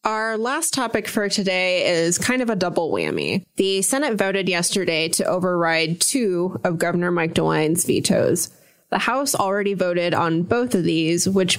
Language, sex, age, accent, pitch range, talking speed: English, female, 20-39, American, 170-200 Hz, 165 wpm